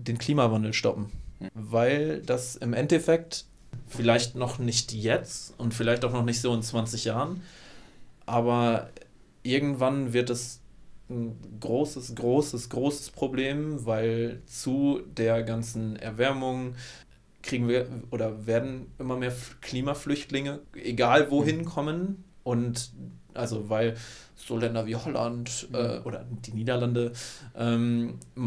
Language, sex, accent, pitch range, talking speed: German, male, German, 115-125 Hz, 120 wpm